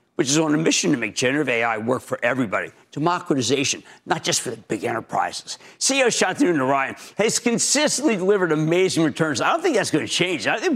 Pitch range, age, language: 140-225 Hz, 50-69, English